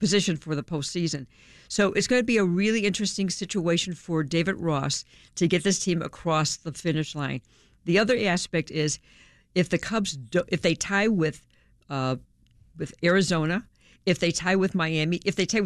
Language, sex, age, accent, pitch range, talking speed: English, female, 60-79, American, 160-200 Hz, 175 wpm